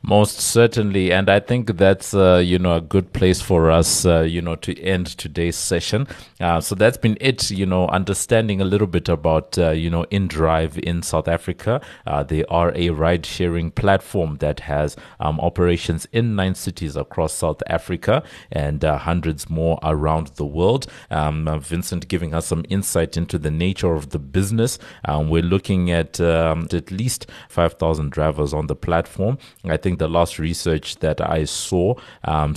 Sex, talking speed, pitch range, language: male, 180 wpm, 80-95 Hz, English